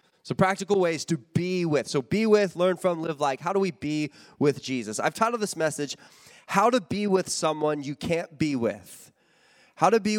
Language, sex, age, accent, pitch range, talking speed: English, male, 20-39, American, 155-220 Hz, 205 wpm